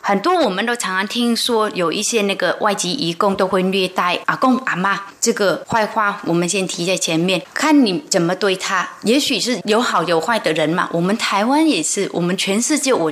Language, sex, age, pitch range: Chinese, female, 20-39, 190-260 Hz